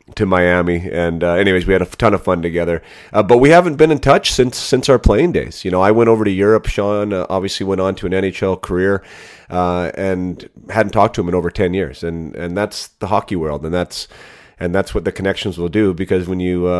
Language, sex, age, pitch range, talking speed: English, male, 30-49, 90-105 Hz, 245 wpm